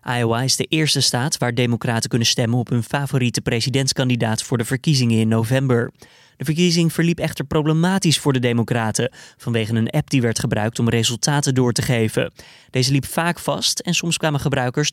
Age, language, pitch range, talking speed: 20-39, Dutch, 120-150 Hz, 180 wpm